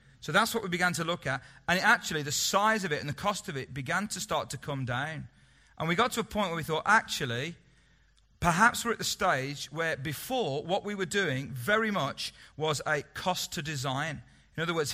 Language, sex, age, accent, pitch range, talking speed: English, male, 40-59, British, 135-180 Hz, 225 wpm